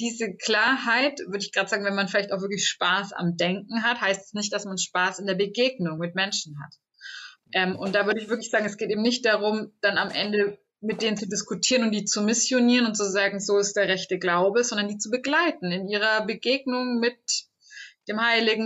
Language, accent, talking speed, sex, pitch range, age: German, German, 220 wpm, female, 185-225 Hz, 20-39